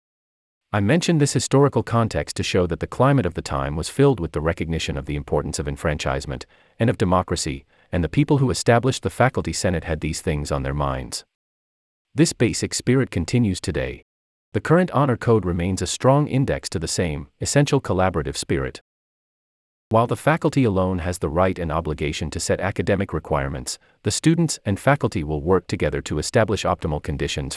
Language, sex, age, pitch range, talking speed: English, male, 40-59, 75-110 Hz, 180 wpm